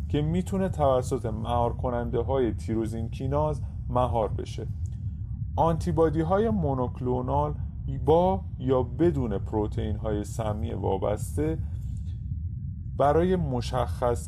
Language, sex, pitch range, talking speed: Persian, male, 105-130 Hz, 85 wpm